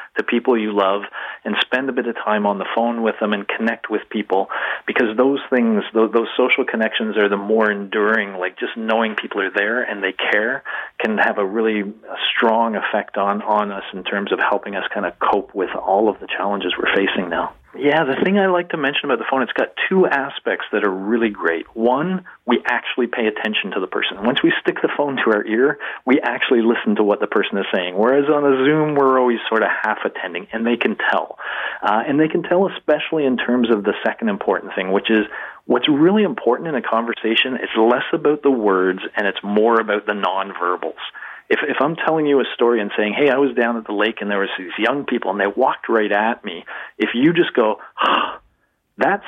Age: 40-59